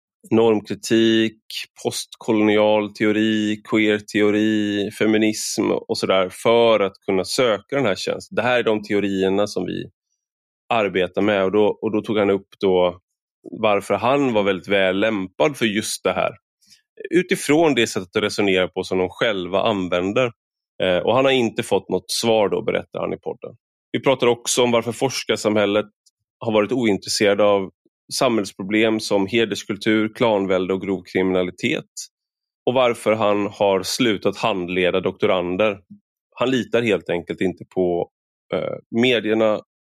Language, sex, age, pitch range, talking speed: Swedish, male, 20-39, 95-115 Hz, 145 wpm